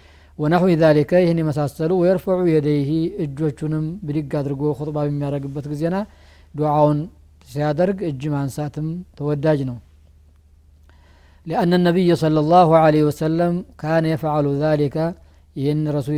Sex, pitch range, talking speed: male, 140-165 Hz, 110 wpm